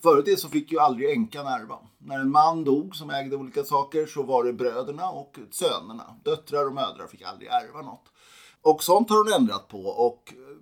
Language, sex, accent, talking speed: Swedish, male, native, 205 wpm